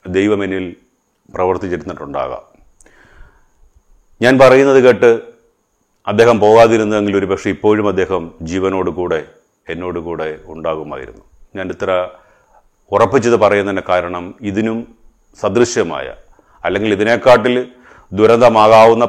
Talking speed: 80 wpm